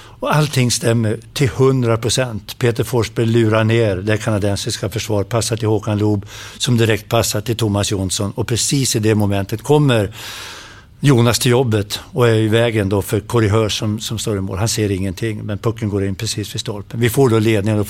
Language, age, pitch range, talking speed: English, 60-79, 105-120 Hz, 195 wpm